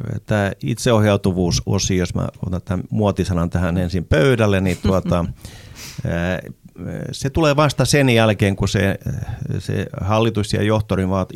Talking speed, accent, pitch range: 120 wpm, native, 95-130 Hz